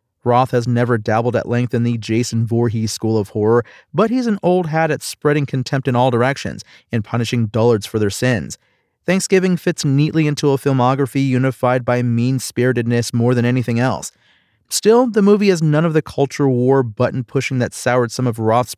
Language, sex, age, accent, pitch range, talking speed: English, male, 40-59, American, 115-135 Hz, 185 wpm